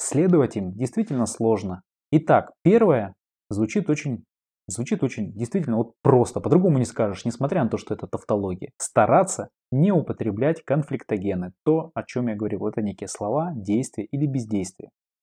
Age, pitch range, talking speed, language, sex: 20-39, 105-140 Hz, 145 wpm, Russian, male